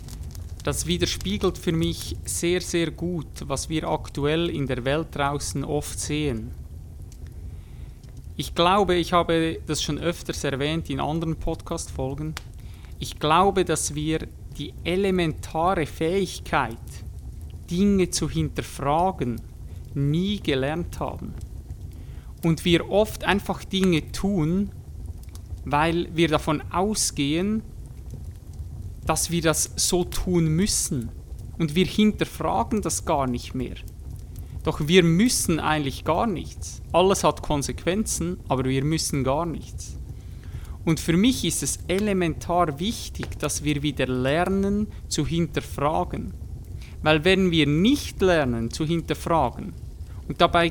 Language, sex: German, male